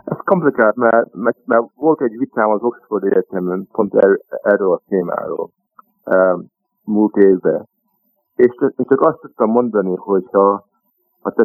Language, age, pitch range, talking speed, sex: Hungarian, 50-69, 100-140 Hz, 130 wpm, male